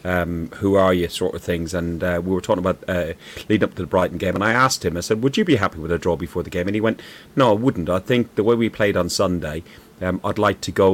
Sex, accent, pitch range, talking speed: male, British, 95-115 Hz, 300 wpm